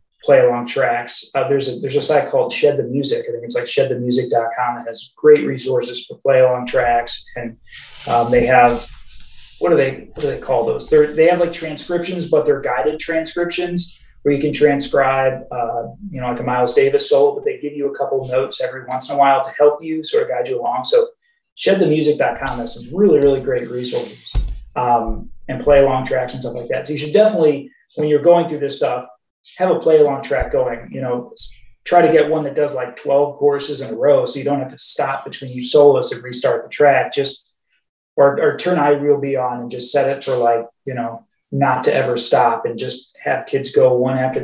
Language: English